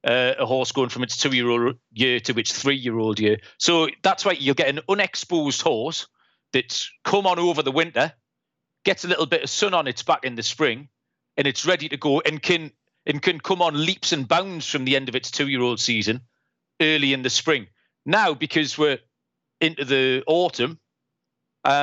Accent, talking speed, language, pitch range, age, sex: British, 195 wpm, English, 125-170 Hz, 40-59, male